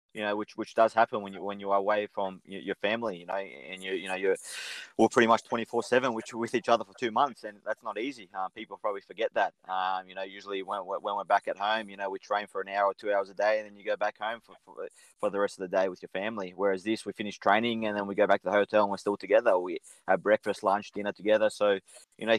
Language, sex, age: English, male, 20-39